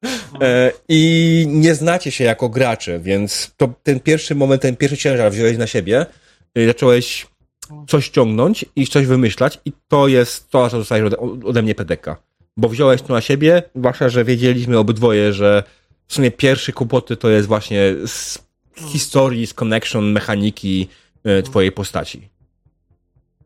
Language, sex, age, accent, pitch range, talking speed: Polish, male, 30-49, native, 100-135 Hz, 150 wpm